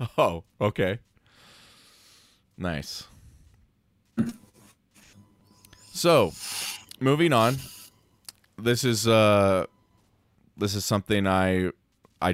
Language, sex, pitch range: English, male, 85-105 Hz